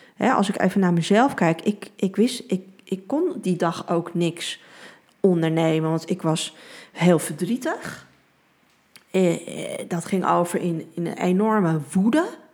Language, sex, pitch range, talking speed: Dutch, female, 170-205 Hz, 145 wpm